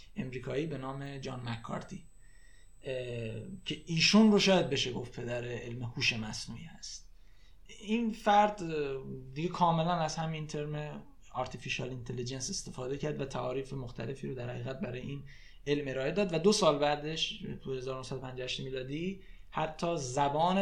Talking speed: 135 wpm